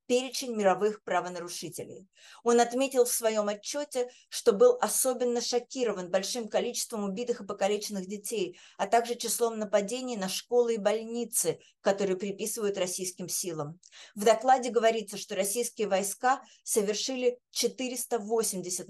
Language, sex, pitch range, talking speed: Russian, female, 180-230 Hz, 120 wpm